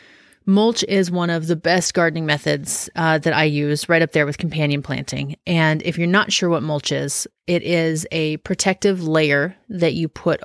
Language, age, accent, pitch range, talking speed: English, 30-49, American, 155-185 Hz, 195 wpm